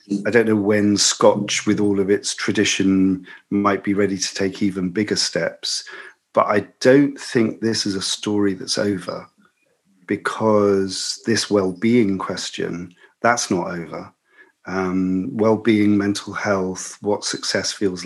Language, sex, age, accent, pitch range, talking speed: English, male, 40-59, British, 95-110 Hz, 140 wpm